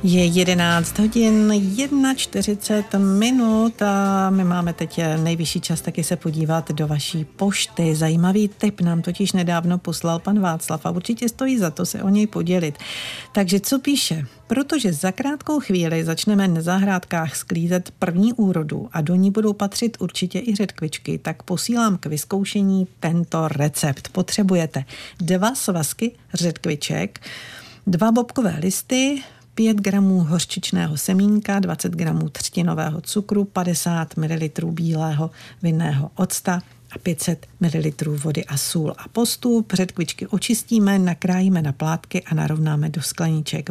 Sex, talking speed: female, 135 wpm